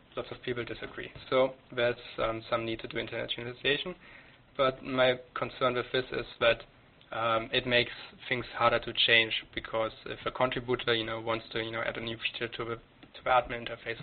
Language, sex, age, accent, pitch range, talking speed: English, male, 20-39, German, 115-125 Hz, 195 wpm